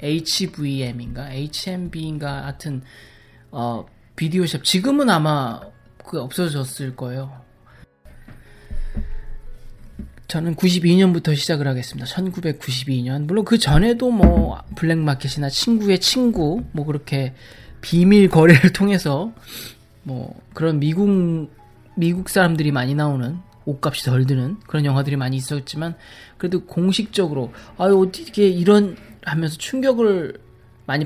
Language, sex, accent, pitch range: Korean, male, native, 130-180 Hz